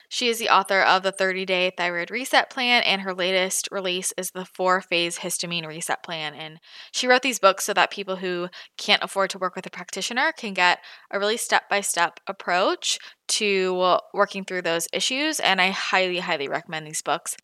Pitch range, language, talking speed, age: 175-205 Hz, English, 185 wpm, 20-39